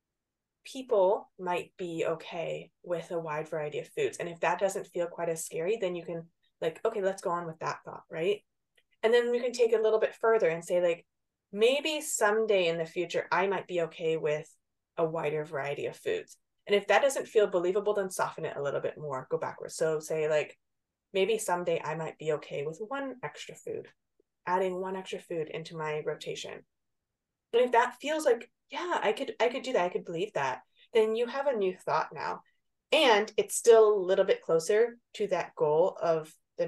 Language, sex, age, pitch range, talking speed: English, female, 20-39, 165-265 Hz, 210 wpm